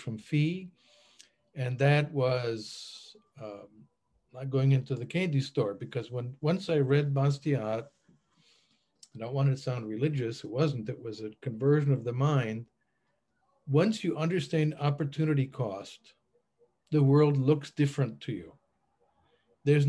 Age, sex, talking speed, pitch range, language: 50-69, male, 140 wpm, 120-150 Hz, English